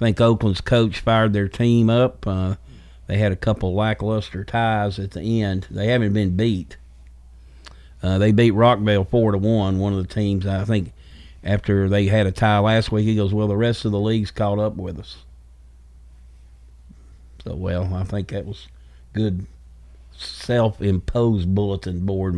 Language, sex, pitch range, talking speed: English, male, 80-115 Hz, 170 wpm